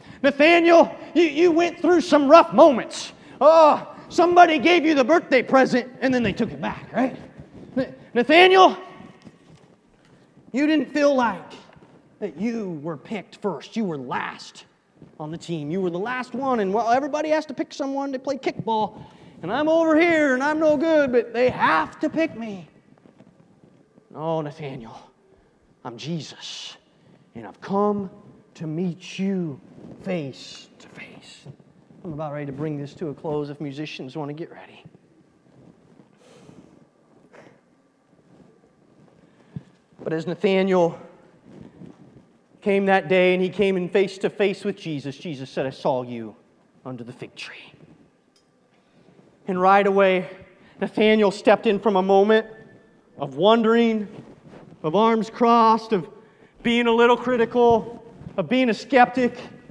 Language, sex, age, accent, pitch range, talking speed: English, male, 30-49, American, 180-260 Hz, 140 wpm